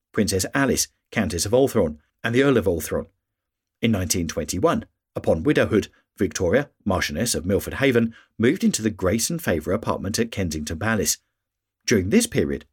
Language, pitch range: English, 90-115 Hz